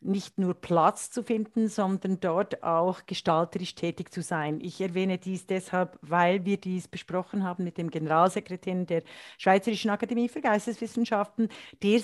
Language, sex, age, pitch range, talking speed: German, female, 50-69, 170-210 Hz, 150 wpm